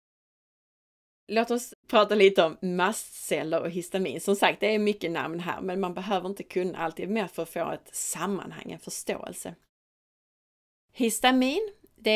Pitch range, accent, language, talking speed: 160-210 Hz, native, Swedish, 155 wpm